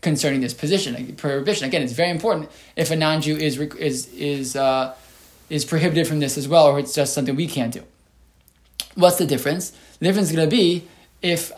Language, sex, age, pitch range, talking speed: English, male, 20-39, 145-170 Hz, 195 wpm